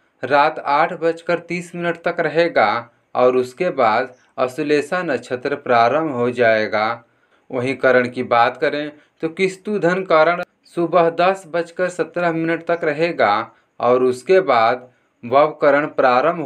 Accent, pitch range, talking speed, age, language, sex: native, 125-170 Hz, 135 wpm, 30-49, Hindi, male